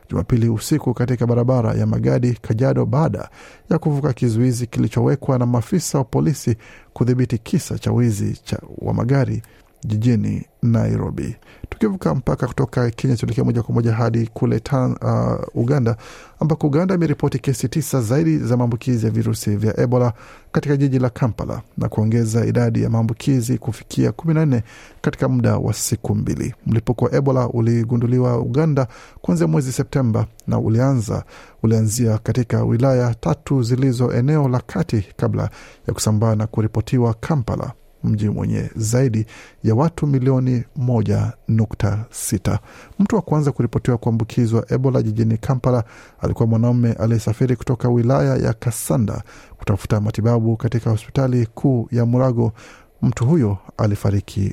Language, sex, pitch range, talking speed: Swahili, male, 110-130 Hz, 130 wpm